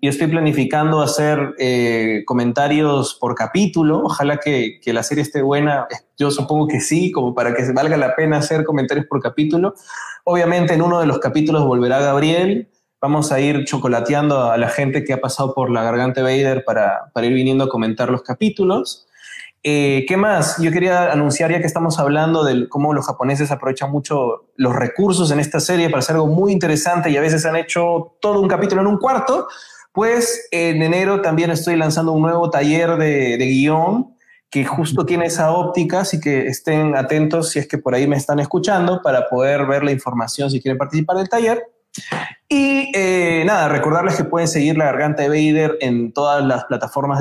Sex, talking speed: male, 190 wpm